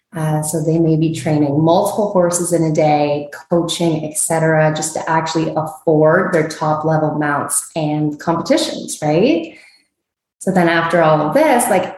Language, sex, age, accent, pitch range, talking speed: English, female, 20-39, American, 155-185 Hz, 160 wpm